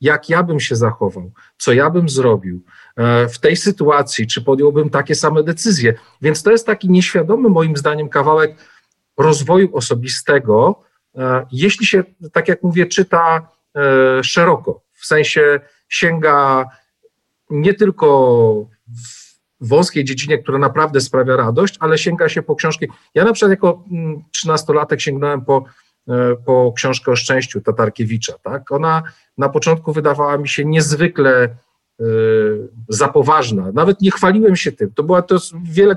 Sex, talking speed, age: male, 140 wpm, 40-59